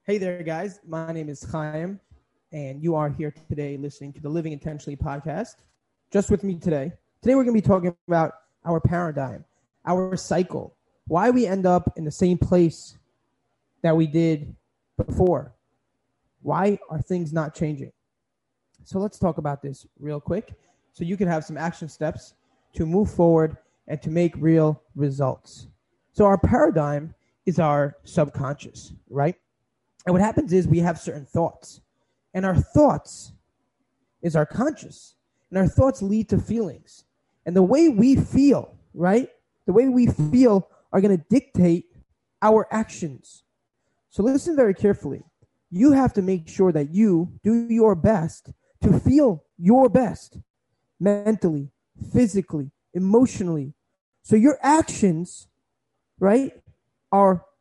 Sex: male